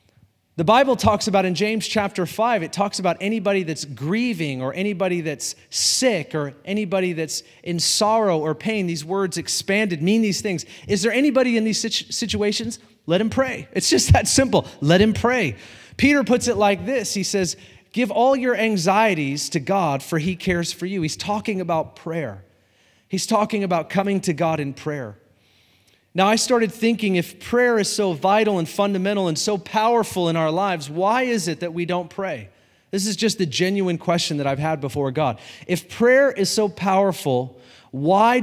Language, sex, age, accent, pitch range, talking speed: English, male, 30-49, American, 155-210 Hz, 185 wpm